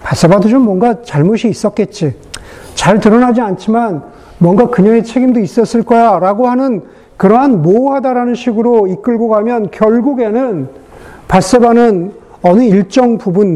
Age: 50-69